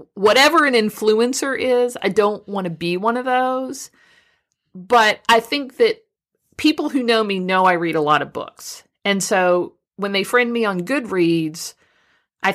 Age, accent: 50-69, American